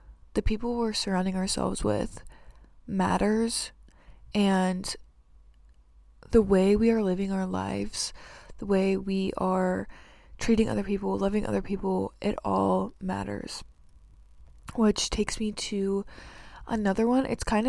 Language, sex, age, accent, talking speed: English, female, 20-39, American, 120 wpm